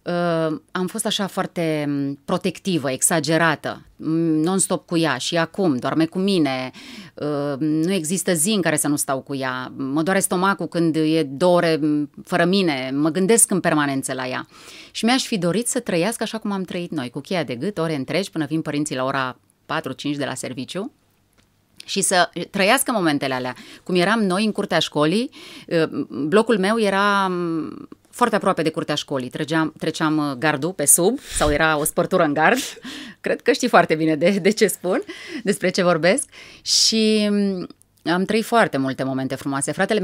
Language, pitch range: Romanian, 150-195 Hz